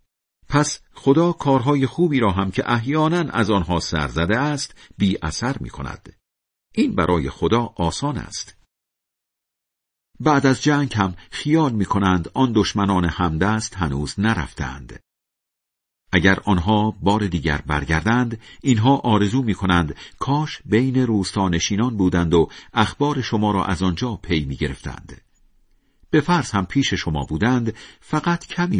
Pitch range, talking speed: 85-125 Hz, 125 wpm